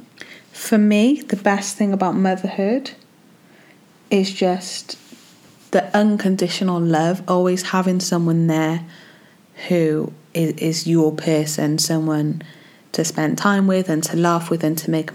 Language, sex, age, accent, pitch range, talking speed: English, female, 30-49, British, 165-205 Hz, 130 wpm